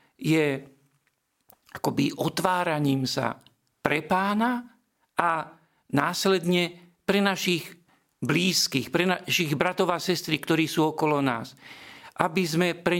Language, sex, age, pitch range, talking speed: Slovak, male, 50-69, 135-170 Hz, 105 wpm